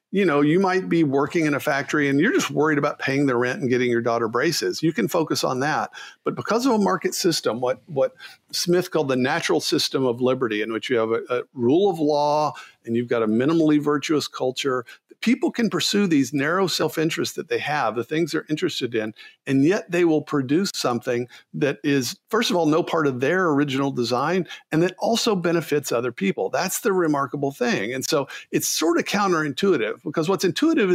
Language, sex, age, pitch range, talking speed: English, male, 50-69, 140-185 Hz, 210 wpm